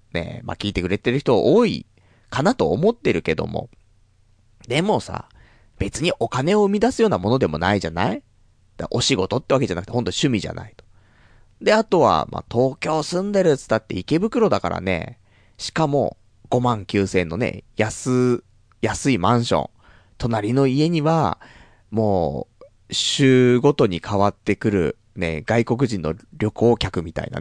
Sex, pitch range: male, 100-135 Hz